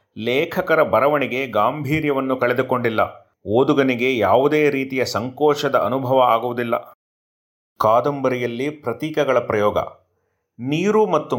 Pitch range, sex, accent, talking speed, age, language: 120-145 Hz, male, native, 80 wpm, 30-49, Kannada